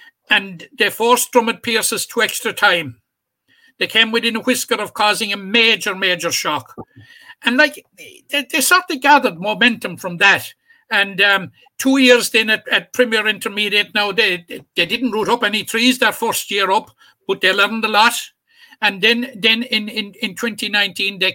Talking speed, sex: 175 wpm, male